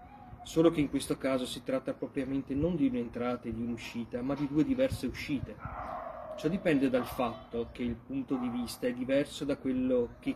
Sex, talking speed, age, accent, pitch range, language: male, 190 wpm, 30-49, native, 120-165 Hz, Italian